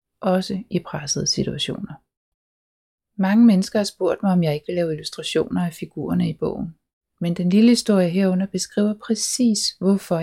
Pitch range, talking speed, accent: 160-205 Hz, 160 wpm, native